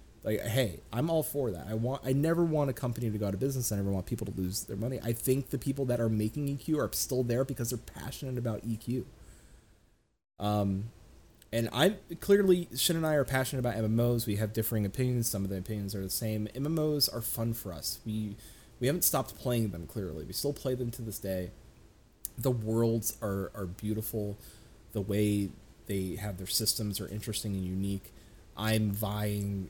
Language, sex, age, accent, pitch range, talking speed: English, male, 30-49, American, 95-115 Hz, 200 wpm